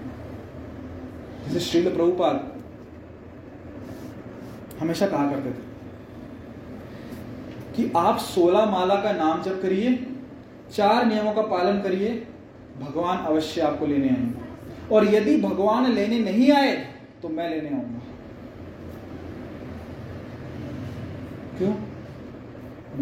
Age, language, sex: 30-49, Hindi, male